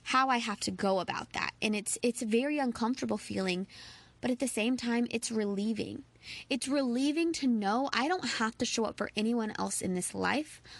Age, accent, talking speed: 20-39, American, 205 wpm